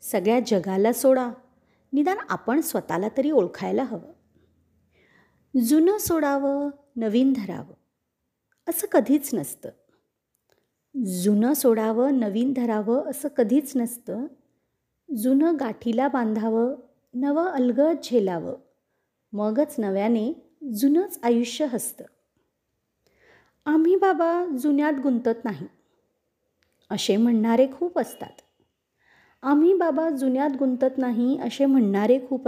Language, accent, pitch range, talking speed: Marathi, native, 235-300 Hz, 95 wpm